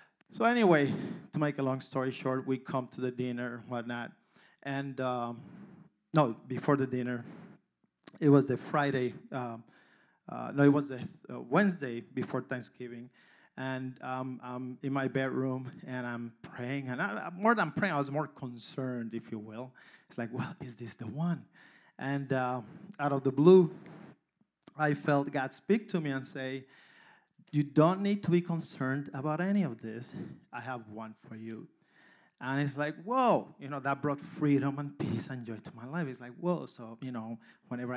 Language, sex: English, male